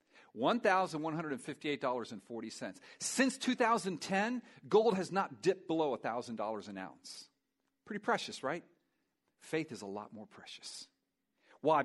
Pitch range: 170-265 Hz